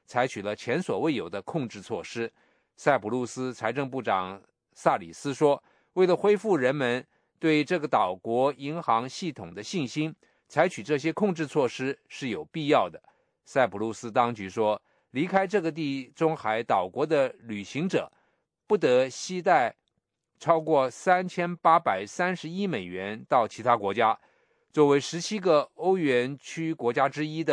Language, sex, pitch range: English, male, 120-165 Hz